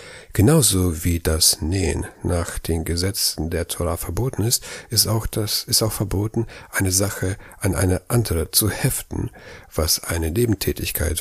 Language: German